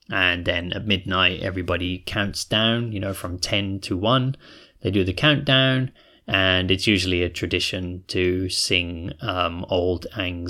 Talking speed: 155 wpm